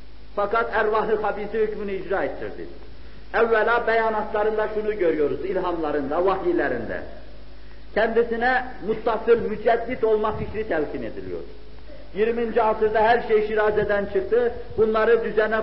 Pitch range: 205-230 Hz